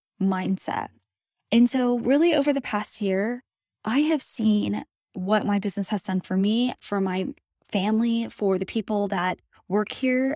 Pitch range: 195-230 Hz